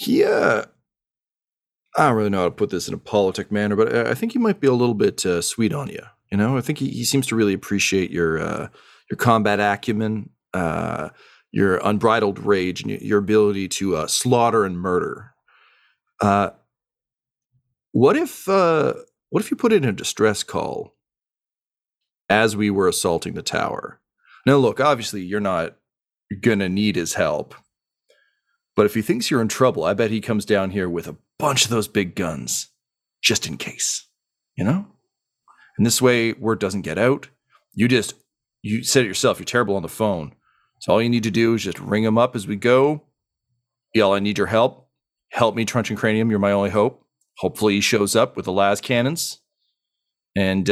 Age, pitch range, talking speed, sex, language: 40-59, 100-130 Hz, 190 wpm, male, English